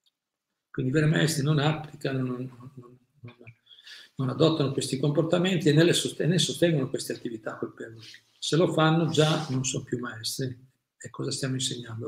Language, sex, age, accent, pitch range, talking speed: Italian, male, 50-69, native, 130-155 Hz, 155 wpm